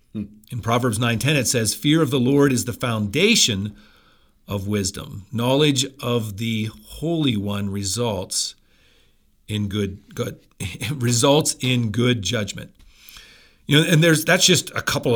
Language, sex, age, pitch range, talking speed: English, male, 50-69, 110-140 Hz, 145 wpm